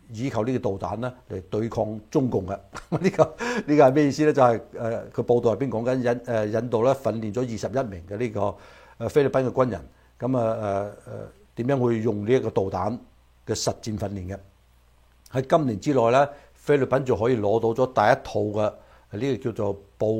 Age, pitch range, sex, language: 60-79, 105-130 Hz, male, Chinese